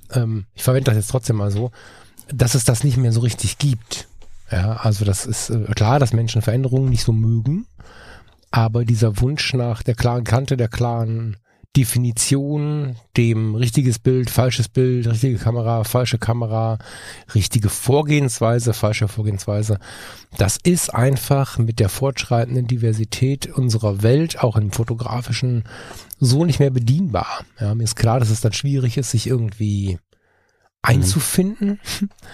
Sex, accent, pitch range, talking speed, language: male, German, 110-130 Hz, 140 wpm, German